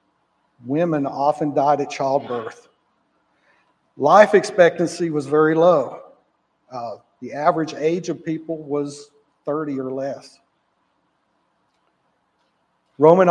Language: English